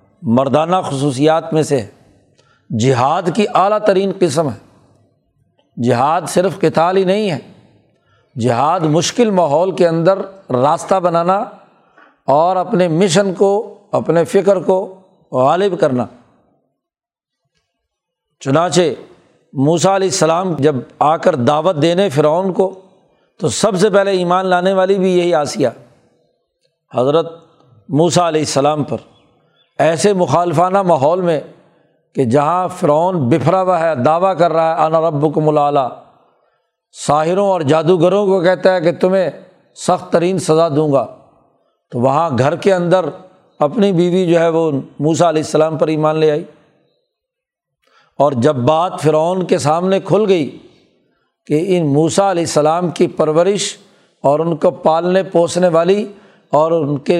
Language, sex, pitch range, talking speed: Urdu, male, 155-190 Hz, 135 wpm